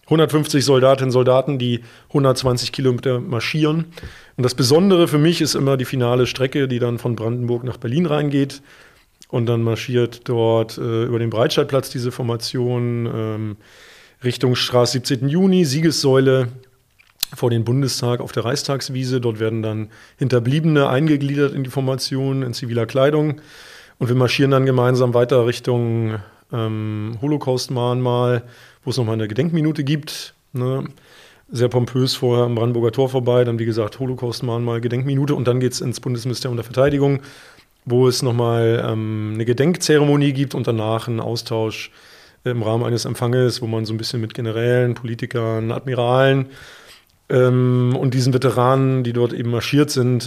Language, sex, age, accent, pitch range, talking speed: German, male, 30-49, German, 115-135 Hz, 155 wpm